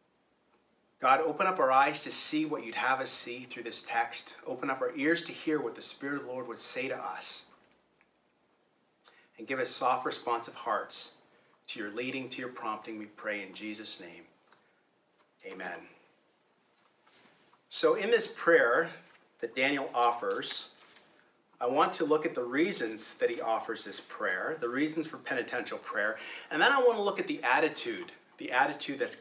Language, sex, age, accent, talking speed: English, male, 30-49, American, 175 wpm